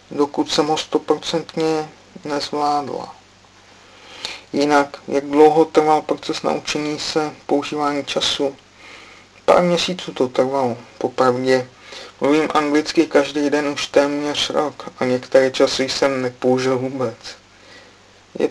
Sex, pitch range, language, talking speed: male, 125-155 Hz, Czech, 105 wpm